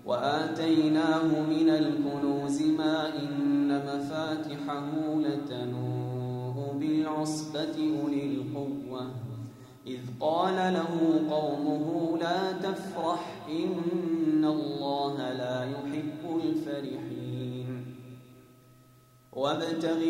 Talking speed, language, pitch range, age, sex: 65 wpm, Arabic, 140-165 Hz, 20-39, male